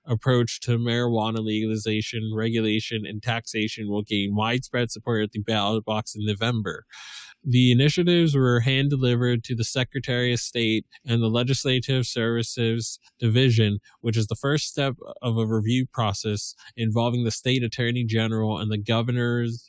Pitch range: 110-130 Hz